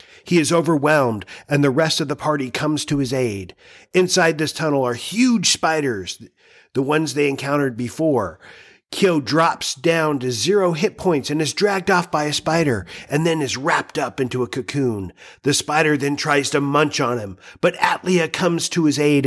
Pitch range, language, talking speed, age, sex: 120-155 Hz, English, 185 wpm, 40-59, male